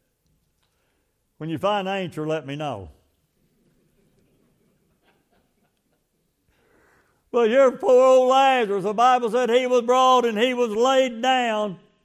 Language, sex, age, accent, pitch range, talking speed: English, male, 60-79, American, 205-255 Hz, 120 wpm